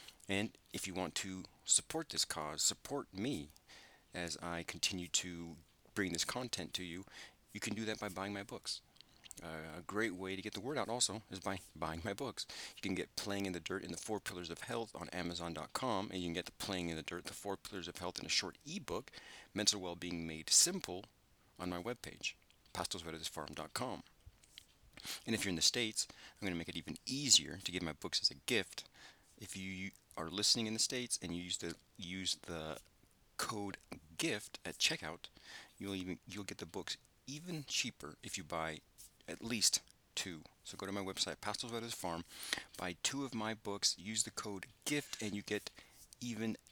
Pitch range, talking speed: 85-110 Hz, 200 wpm